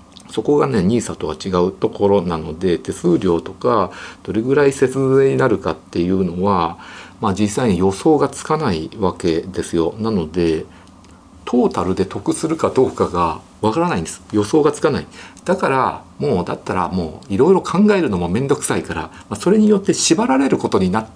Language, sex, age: Japanese, male, 50-69